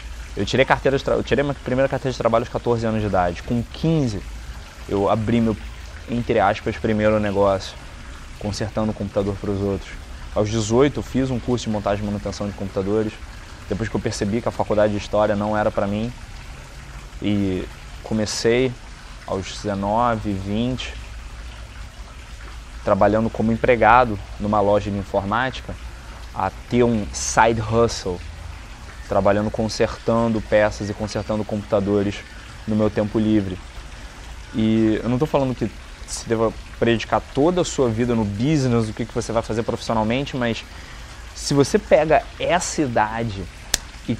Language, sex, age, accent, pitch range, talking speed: Portuguese, male, 20-39, Brazilian, 100-115 Hz, 145 wpm